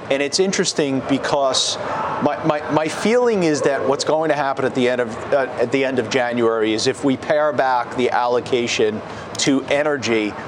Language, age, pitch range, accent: English, 40-59, 135-190 Hz, American